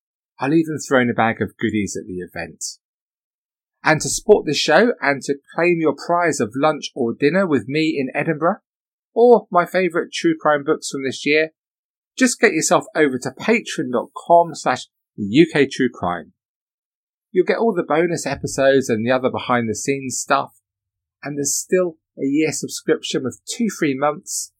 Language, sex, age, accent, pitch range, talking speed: English, male, 30-49, British, 105-170 Hz, 160 wpm